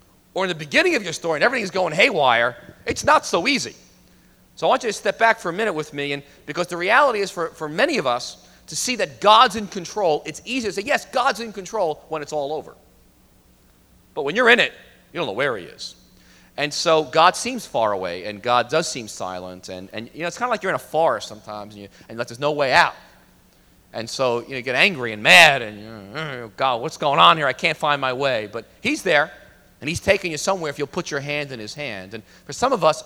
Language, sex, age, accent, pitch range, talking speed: English, male, 40-59, American, 120-160 Hz, 250 wpm